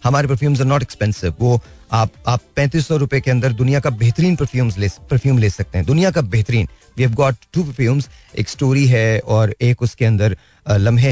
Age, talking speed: 40-59, 195 wpm